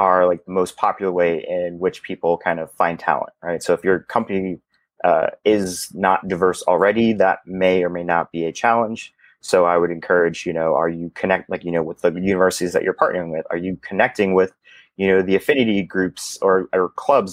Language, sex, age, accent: English, male, 30-49, American